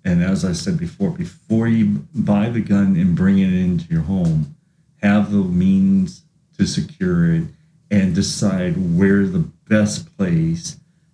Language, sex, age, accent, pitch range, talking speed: English, male, 40-59, American, 140-180 Hz, 150 wpm